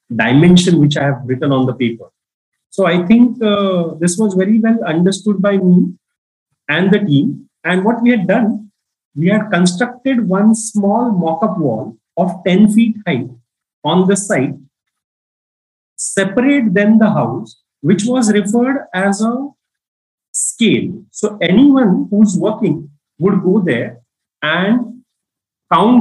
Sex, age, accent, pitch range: male, 30-49, Indian, 155-215 Hz